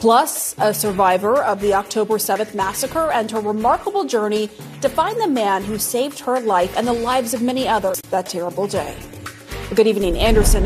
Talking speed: 185 wpm